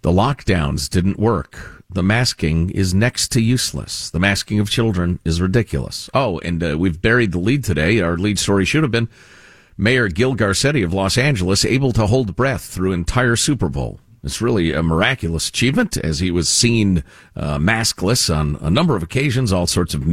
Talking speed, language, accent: 190 wpm, English, American